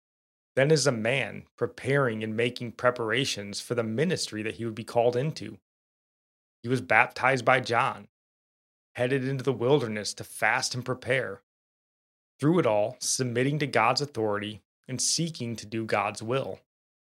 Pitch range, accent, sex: 110-130 Hz, American, male